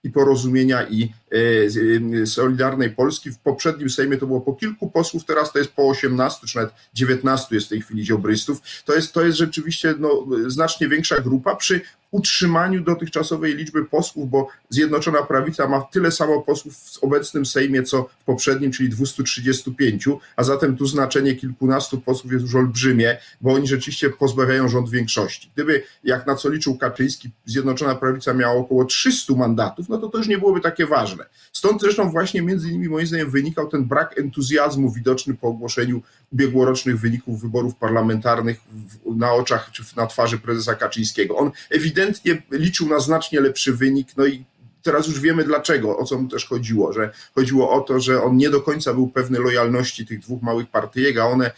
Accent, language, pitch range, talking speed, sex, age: native, Polish, 125-150 Hz, 180 wpm, male, 40-59